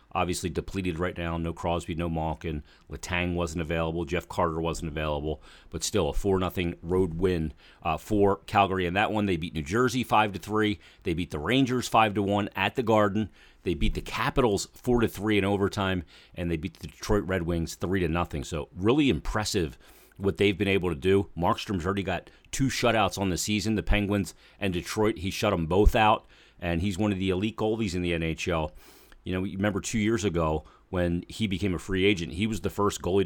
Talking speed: 195 wpm